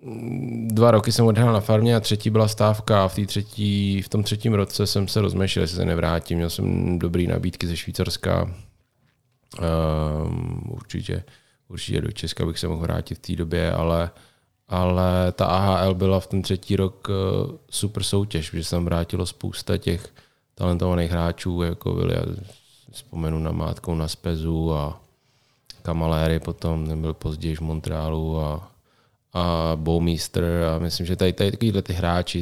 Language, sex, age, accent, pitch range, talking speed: Czech, male, 20-39, native, 85-100 Hz, 160 wpm